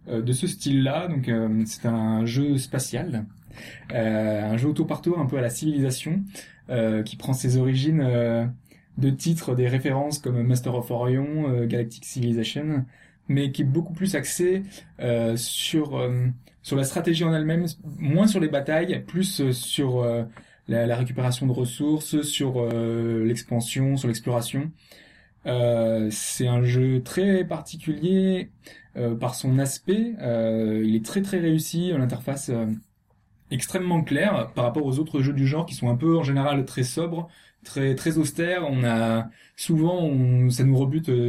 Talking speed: 160 wpm